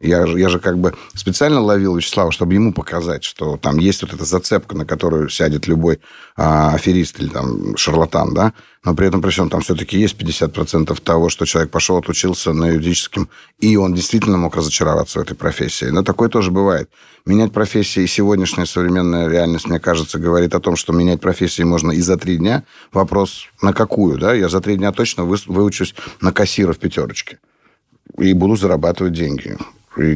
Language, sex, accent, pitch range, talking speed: Russian, male, native, 85-105 Hz, 180 wpm